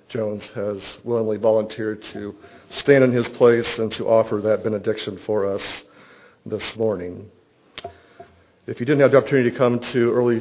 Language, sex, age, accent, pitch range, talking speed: English, male, 50-69, American, 105-120 Hz, 160 wpm